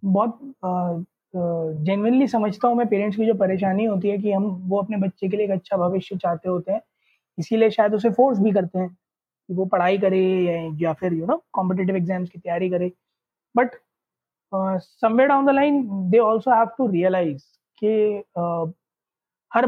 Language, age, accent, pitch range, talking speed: Hindi, 20-39, native, 190-250 Hz, 170 wpm